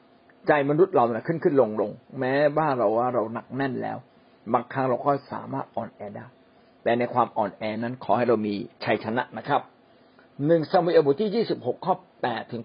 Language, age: Thai, 60-79